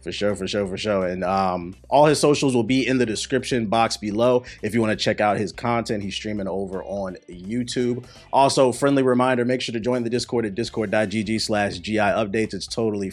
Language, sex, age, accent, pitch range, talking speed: English, male, 30-49, American, 105-140 Hz, 210 wpm